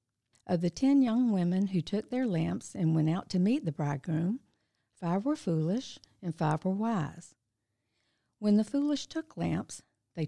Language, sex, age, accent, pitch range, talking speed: English, female, 60-79, American, 160-215 Hz, 170 wpm